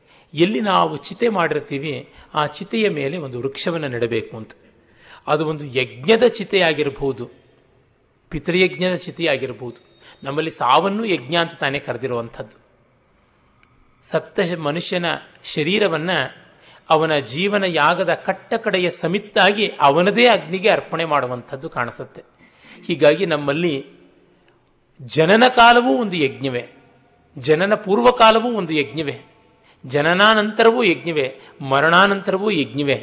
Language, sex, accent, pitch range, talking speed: Kannada, male, native, 140-195 Hz, 95 wpm